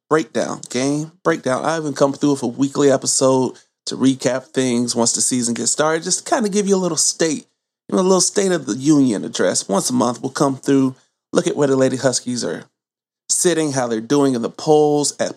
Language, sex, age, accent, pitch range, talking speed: English, male, 30-49, American, 130-160 Hz, 225 wpm